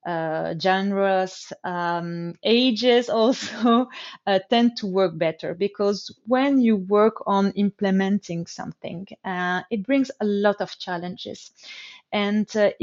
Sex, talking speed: female, 120 wpm